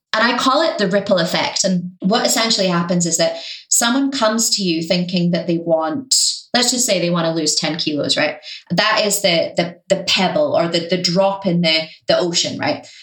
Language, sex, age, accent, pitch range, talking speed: English, female, 20-39, British, 170-210 Hz, 205 wpm